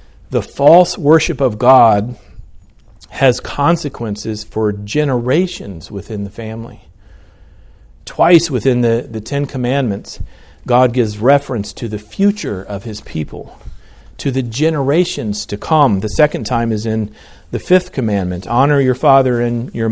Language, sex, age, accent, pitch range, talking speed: English, male, 40-59, American, 100-145 Hz, 135 wpm